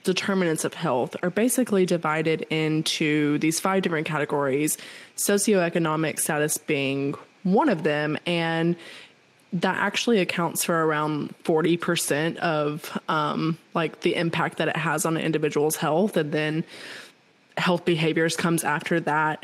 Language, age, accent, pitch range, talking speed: English, 20-39, American, 155-180 Hz, 135 wpm